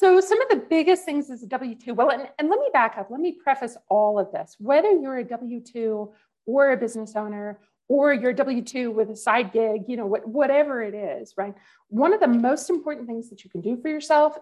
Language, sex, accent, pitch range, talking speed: English, female, American, 215-300 Hz, 240 wpm